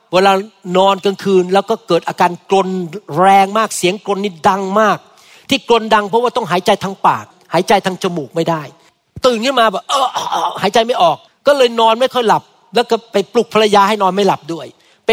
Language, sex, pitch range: Thai, male, 180-230 Hz